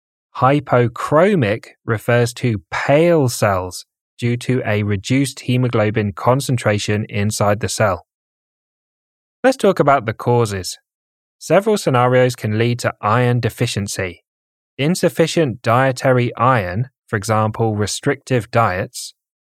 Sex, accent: male, British